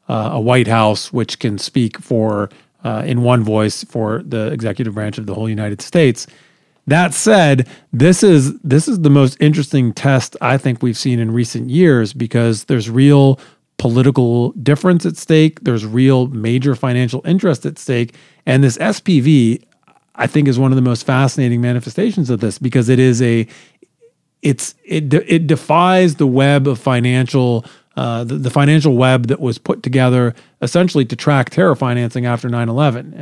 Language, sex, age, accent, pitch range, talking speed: English, male, 40-59, American, 120-145 Hz, 170 wpm